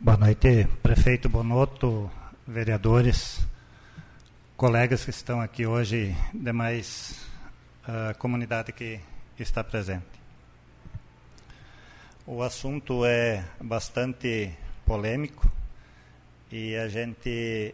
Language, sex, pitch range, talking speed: Portuguese, male, 110-130 Hz, 80 wpm